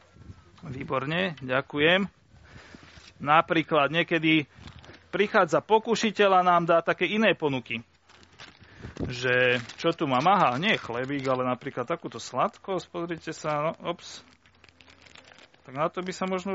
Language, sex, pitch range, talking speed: Slovak, male, 135-190 Hz, 125 wpm